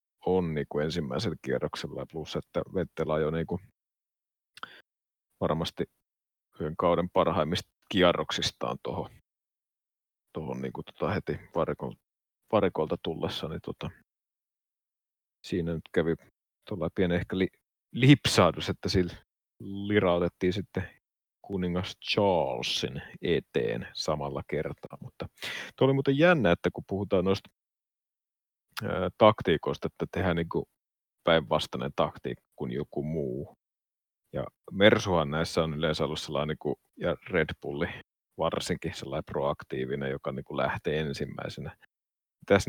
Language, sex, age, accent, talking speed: Finnish, male, 30-49, native, 110 wpm